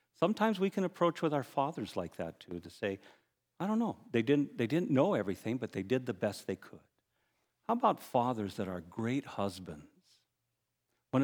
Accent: American